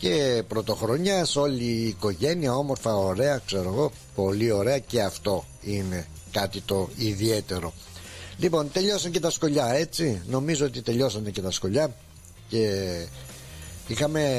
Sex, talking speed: male, 135 wpm